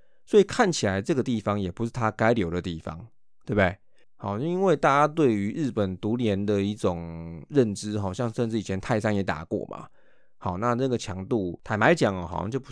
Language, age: Chinese, 20-39